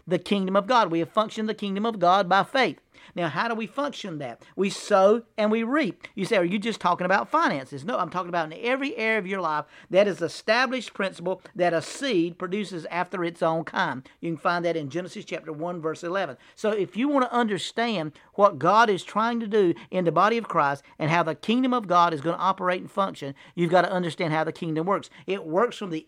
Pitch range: 165-215 Hz